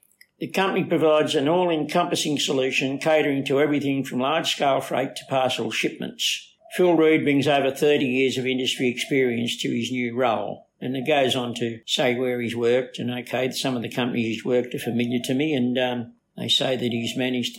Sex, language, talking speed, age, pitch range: male, English, 190 wpm, 60-79, 130-165 Hz